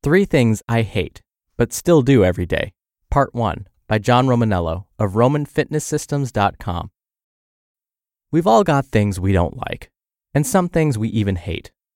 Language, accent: English, American